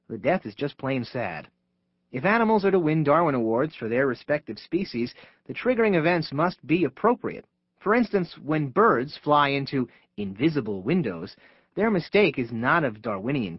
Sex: male